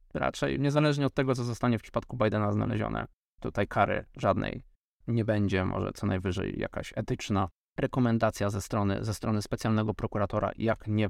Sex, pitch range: male, 100-120 Hz